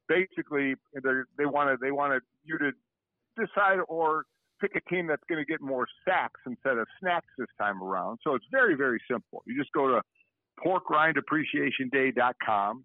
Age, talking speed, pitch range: 50-69, 155 wpm, 120-150 Hz